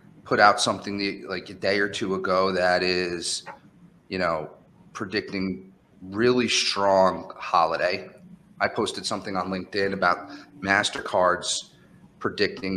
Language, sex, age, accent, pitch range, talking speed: English, male, 30-49, American, 95-145 Hz, 115 wpm